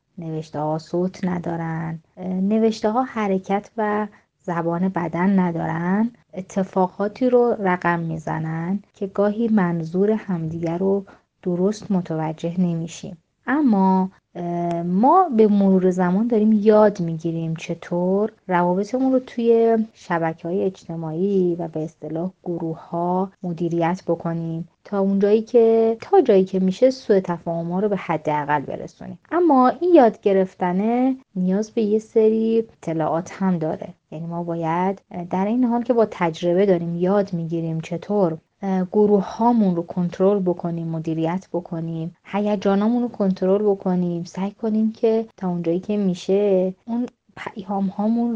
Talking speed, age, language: 130 wpm, 30-49, Persian